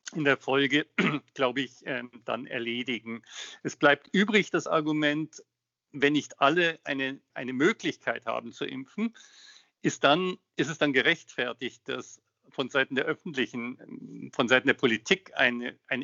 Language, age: German, 50-69